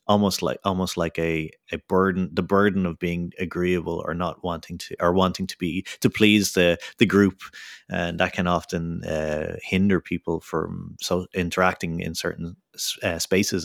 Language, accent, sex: English, Irish, male